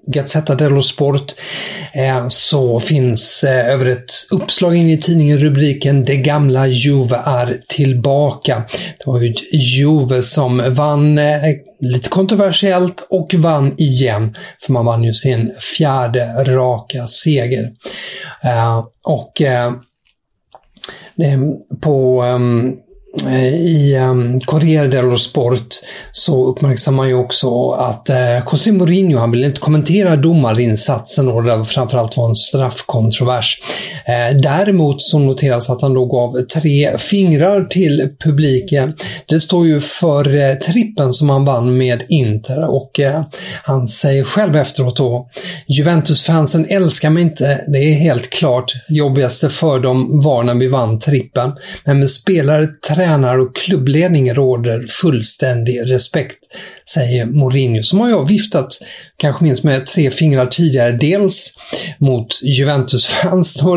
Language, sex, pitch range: English, male, 125-155 Hz